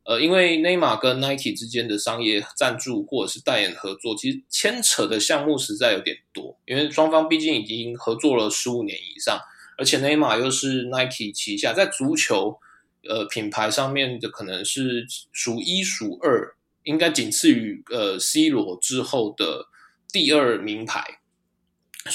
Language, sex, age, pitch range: Chinese, male, 20-39, 120-200 Hz